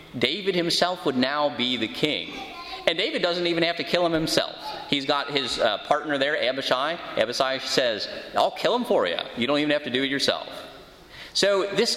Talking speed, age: 200 wpm, 30-49